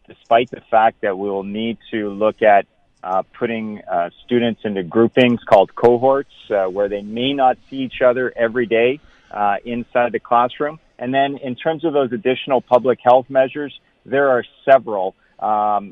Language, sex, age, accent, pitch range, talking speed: English, male, 40-59, American, 110-130 Hz, 175 wpm